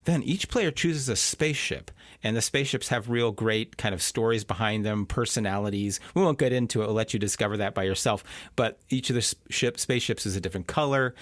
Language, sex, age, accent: English, male, 40-59, American